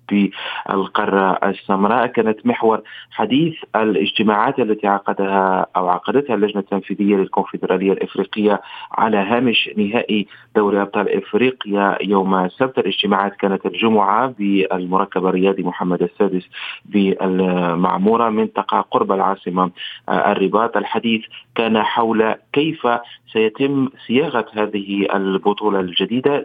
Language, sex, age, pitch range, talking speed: Arabic, male, 30-49, 95-115 Hz, 100 wpm